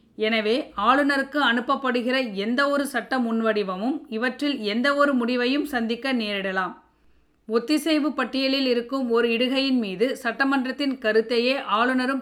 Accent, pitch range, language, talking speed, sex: native, 220-270 Hz, Tamil, 90 wpm, female